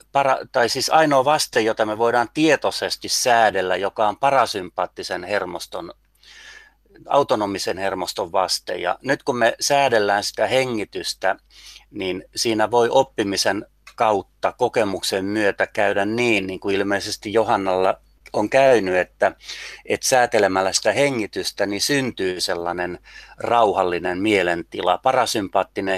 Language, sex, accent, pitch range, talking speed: Finnish, male, native, 95-120 Hz, 115 wpm